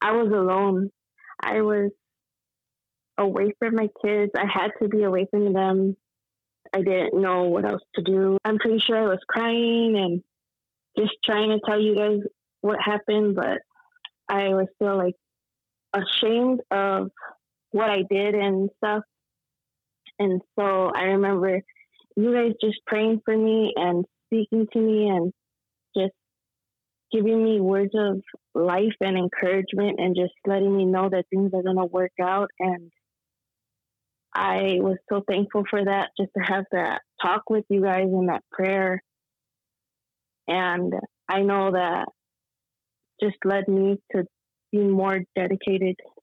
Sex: female